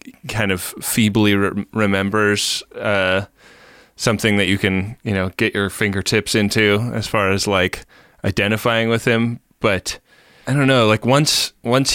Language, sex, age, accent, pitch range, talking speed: English, male, 20-39, American, 95-115 Hz, 145 wpm